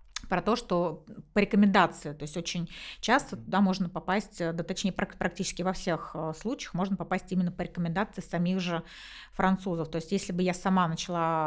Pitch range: 165-195 Hz